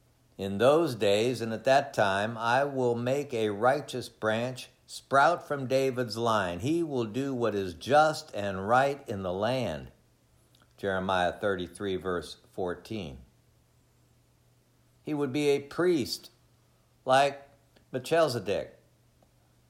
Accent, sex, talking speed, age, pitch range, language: American, male, 120 wpm, 60-79, 100-135 Hz, English